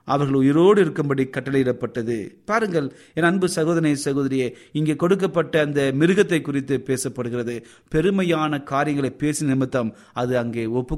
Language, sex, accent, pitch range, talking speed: Tamil, male, native, 135-200 Hz, 120 wpm